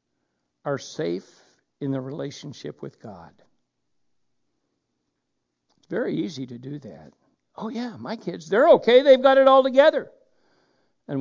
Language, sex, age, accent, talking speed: English, male, 60-79, American, 135 wpm